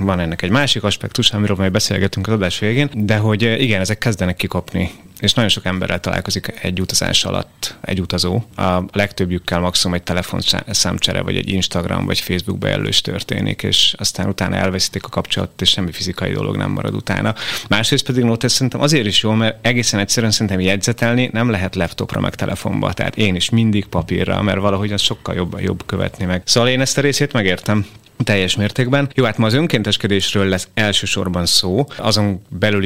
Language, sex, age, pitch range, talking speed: Hungarian, male, 30-49, 90-115 Hz, 185 wpm